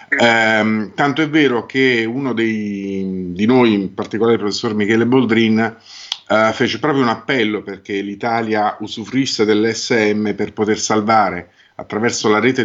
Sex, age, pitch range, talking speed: male, 50-69, 105-130 Hz, 140 wpm